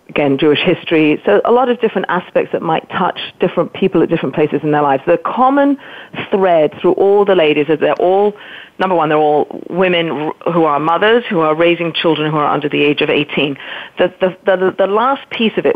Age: 40-59